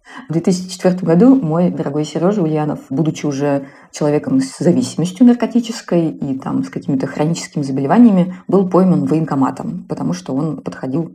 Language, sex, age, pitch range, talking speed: Russian, female, 20-39, 150-195 Hz, 140 wpm